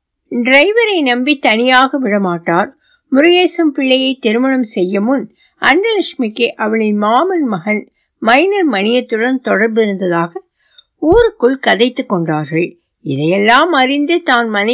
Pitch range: 215-310 Hz